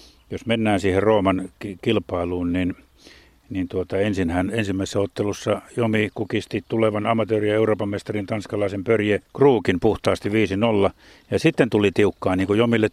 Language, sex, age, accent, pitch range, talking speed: Finnish, male, 50-69, native, 95-110 Hz, 140 wpm